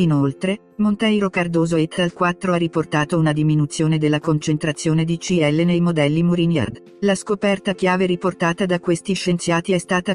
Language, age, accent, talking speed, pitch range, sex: English, 50-69, Italian, 155 wpm, 150-175 Hz, female